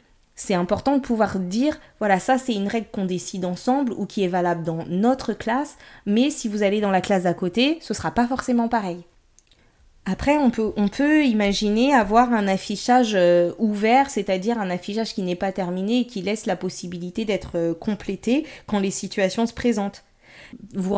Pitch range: 185-230 Hz